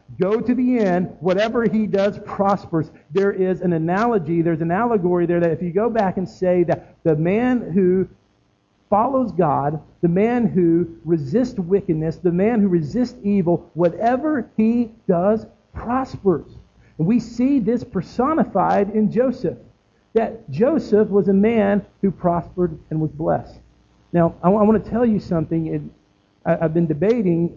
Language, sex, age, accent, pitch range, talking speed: English, male, 50-69, American, 155-205 Hz, 160 wpm